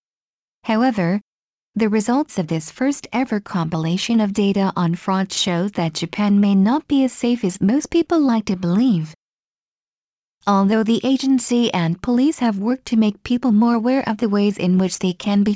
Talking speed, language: 175 wpm, English